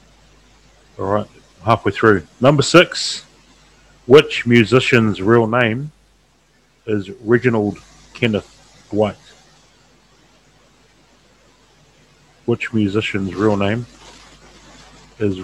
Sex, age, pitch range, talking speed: male, 40-59, 100-125 Hz, 75 wpm